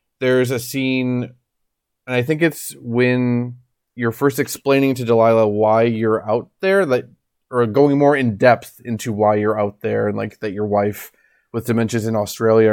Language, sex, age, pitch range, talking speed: English, male, 20-39, 115-145 Hz, 180 wpm